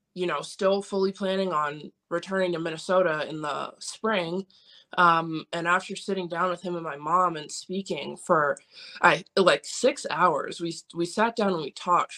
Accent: American